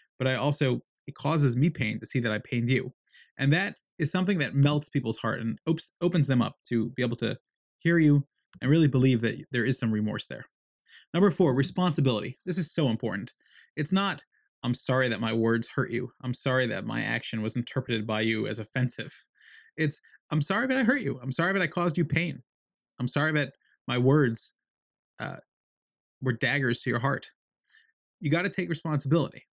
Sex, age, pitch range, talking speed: male, 20-39, 125-150 Hz, 200 wpm